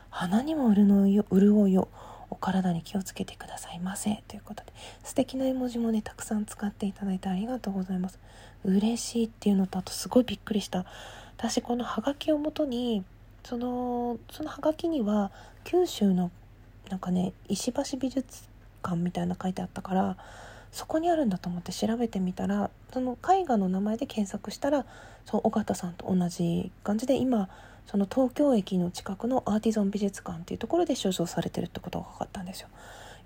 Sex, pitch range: female, 185-245 Hz